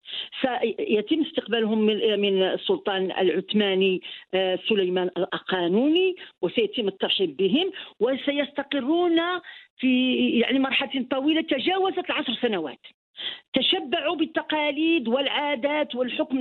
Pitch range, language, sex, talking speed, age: 230-315 Hz, Arabic, female, 85 wpm, 40-59